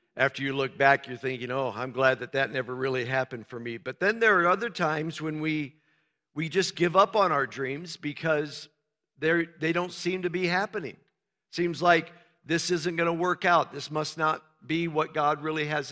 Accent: American